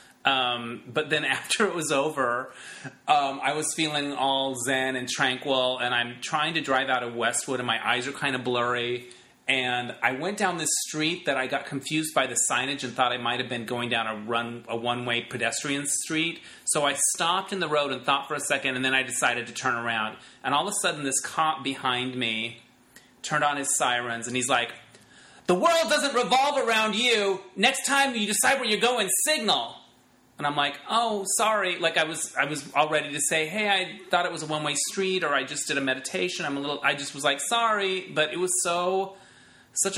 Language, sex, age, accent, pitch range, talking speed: English, male, 30-49, American, 125-165 Hz, 220 wpm